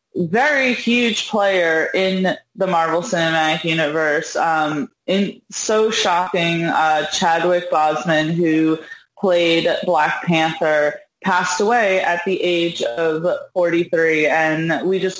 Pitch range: 160-185 Hz